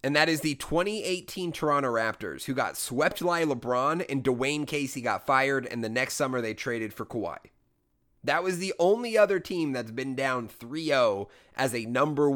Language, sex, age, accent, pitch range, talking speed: English, male, 30-49, American, 125-175 Hz, 185 wpm